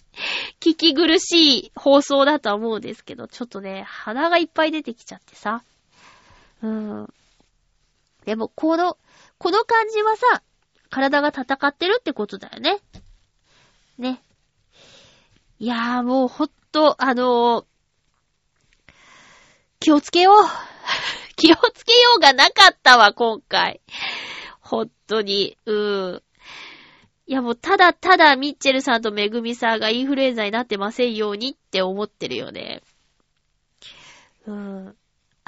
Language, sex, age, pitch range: Japanese, female, 20-39, 220-315 Hz